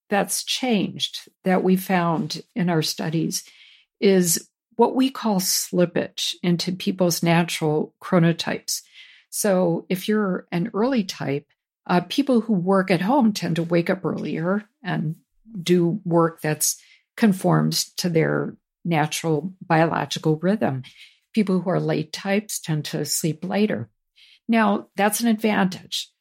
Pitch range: 165-195 Hz